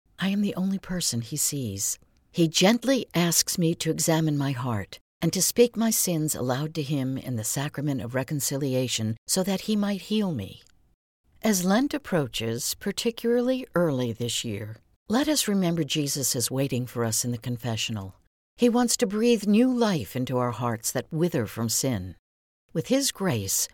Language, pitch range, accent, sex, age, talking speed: English, 120-180 Hz, American, female, 60-79, 170 wpm